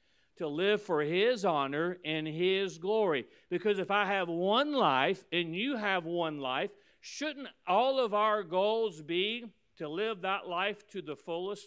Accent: American